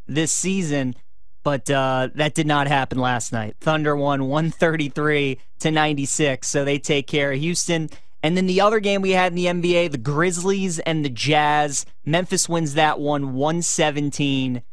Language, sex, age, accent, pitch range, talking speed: English, male, 20-39, American, 145-180 Hz, 165 wpm